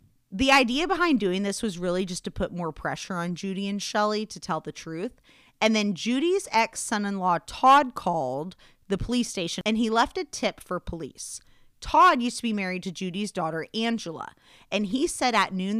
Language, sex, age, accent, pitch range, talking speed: English, female, 30-49, American, 170-230 Hz, 190 wpm